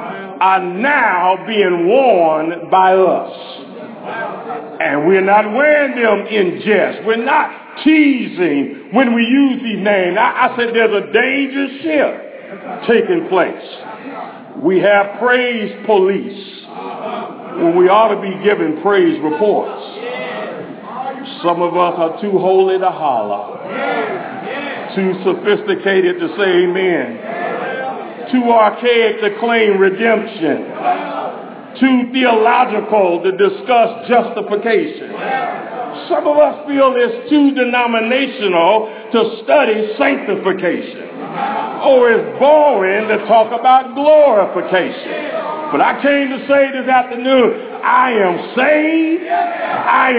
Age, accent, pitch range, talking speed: 50-69, American, 205-290 Hz, 110 wpm